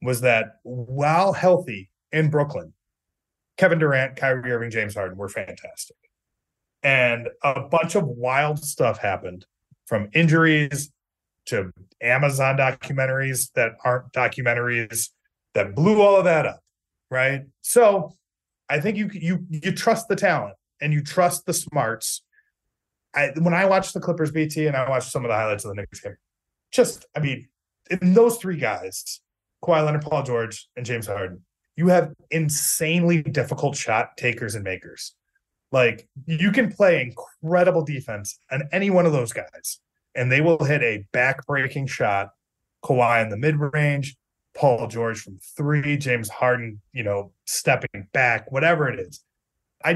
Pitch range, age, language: 120-165 Hz, 30-49, English